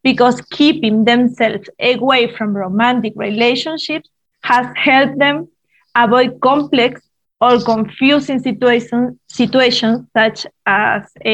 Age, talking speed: 20-39, 95 wpm